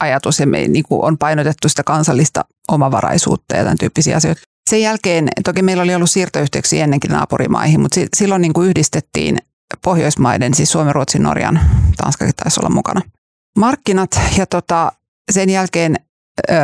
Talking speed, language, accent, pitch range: 130 wpm, Finnish, native, 150-185 Hz